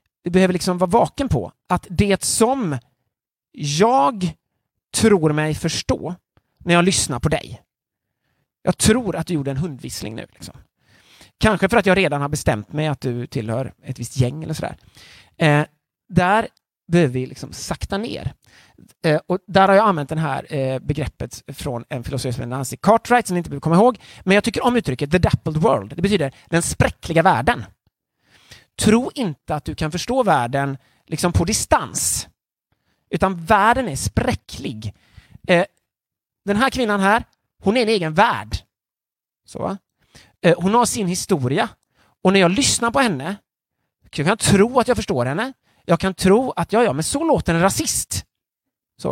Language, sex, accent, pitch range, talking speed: Swedish, male, native, 145-205 Hz, 175 wpm